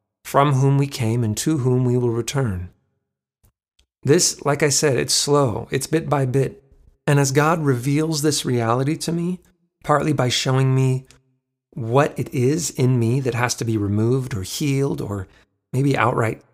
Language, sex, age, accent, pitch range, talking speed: English, male, 40-59, American, 120-150 Hz, 170 wpm